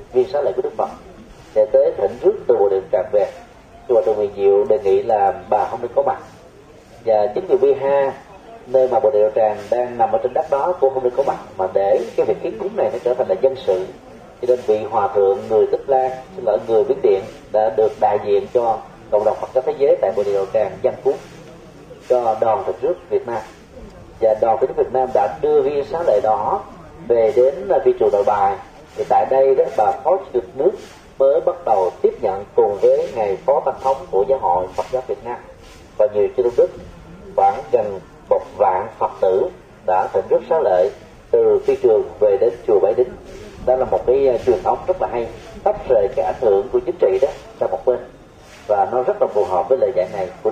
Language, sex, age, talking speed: Vietnamese, male, 30-49, 235 wpm